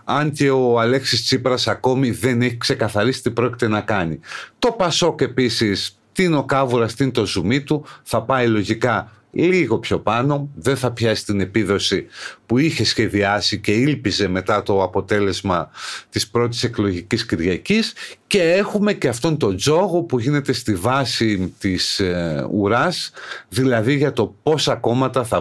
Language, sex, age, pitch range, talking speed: Greek, male, 50-69, 110-145 Hz, 160 wpm